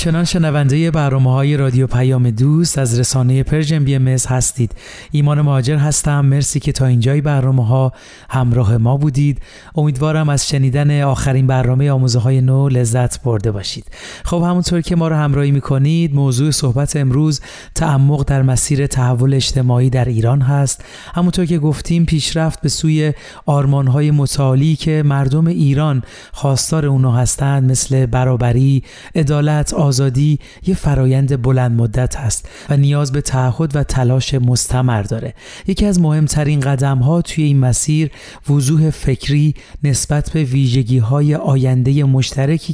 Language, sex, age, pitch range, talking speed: Persian, male, 40-59, 130-150 Hz, 140 wpm